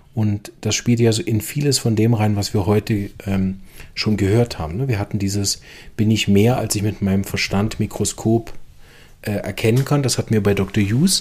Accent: German